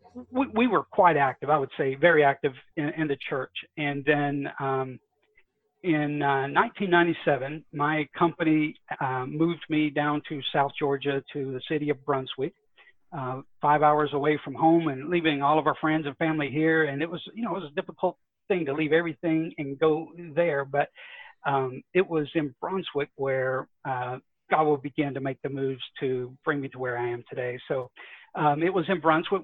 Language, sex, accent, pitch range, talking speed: English, male, American, 140-160 Hz, 185 wpm